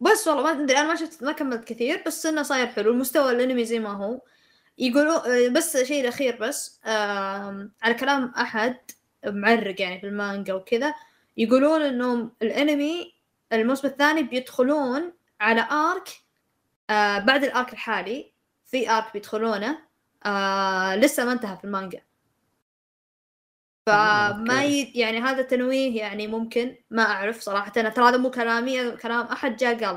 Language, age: Arabic, 20-39